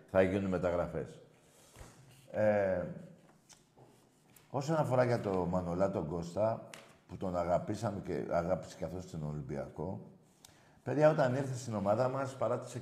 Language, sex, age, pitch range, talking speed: Greek, male, 50-69, 95-135 Hz, 120 wpm